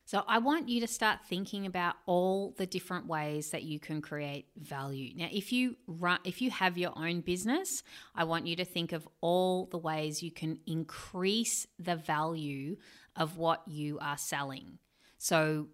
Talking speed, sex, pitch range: 180 wpm, female, 165-210 Hz